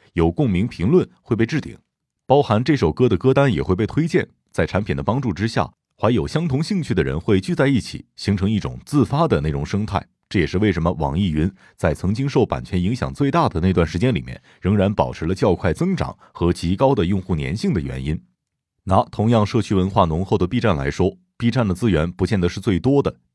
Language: Chinese